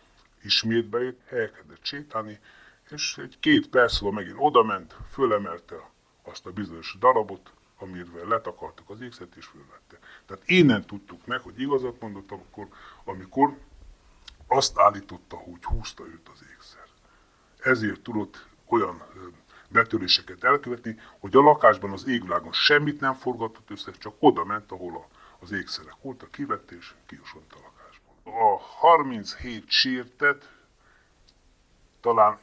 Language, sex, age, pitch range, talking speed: Hungarian, female, 30-49, 100-145 Hz, 120 wpm